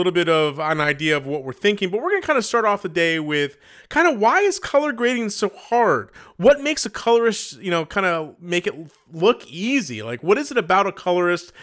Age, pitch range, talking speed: 30-49, 140-190 Hz, 245 wpm